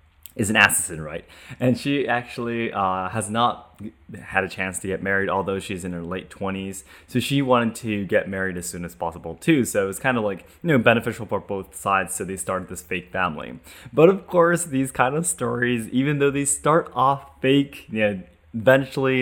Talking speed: 210 wpm